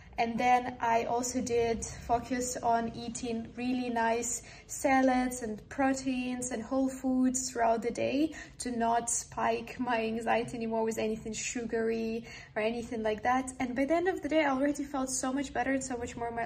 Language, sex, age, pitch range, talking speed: English, female, 20-39, 230-255 Hz, 180 wpm